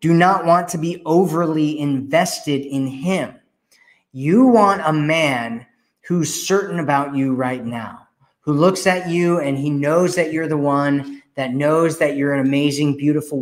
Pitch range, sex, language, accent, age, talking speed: 130-165 Hz, male, English, American, 30-49, 165 wpm